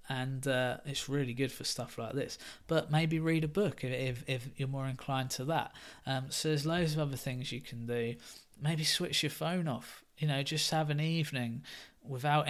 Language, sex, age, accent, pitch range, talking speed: English, male, 20-39, British, 125-150 Hz, 205 wpm